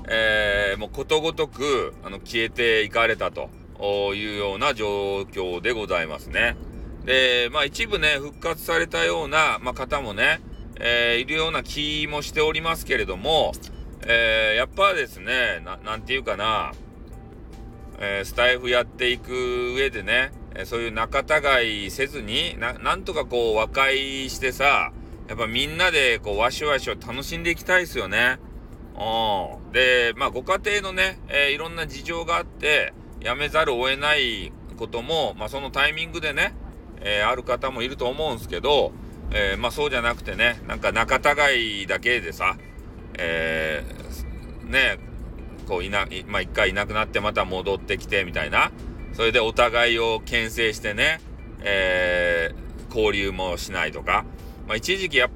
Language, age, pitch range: Japanese, 40-59, 100-140 Hz